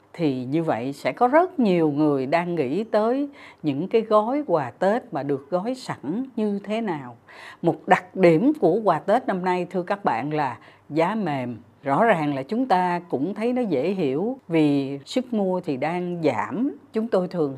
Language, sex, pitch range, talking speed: Vietnamese, female, 155-225 Hz, 190 wpm